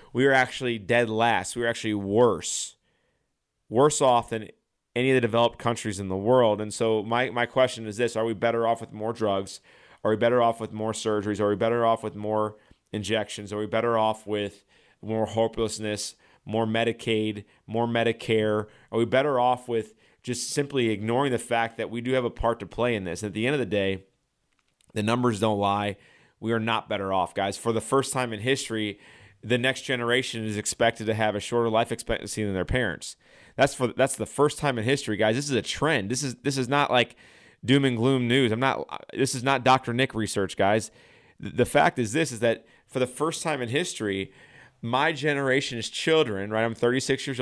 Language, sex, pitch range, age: English, male, 110-125 Hz, 30-49